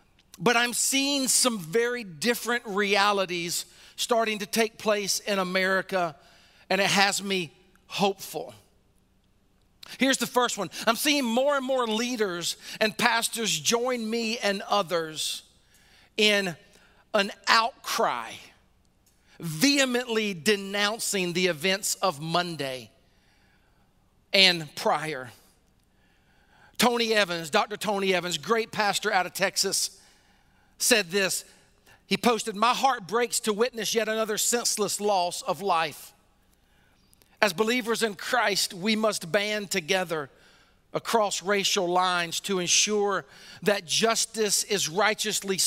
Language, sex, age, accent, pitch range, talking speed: English, male, 40-59, American, 180-220 Hz, 115 wpm